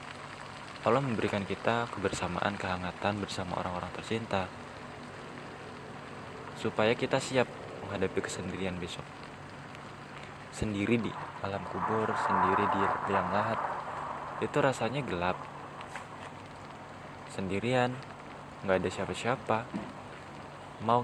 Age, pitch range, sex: 20-39, 95-115 Hz, male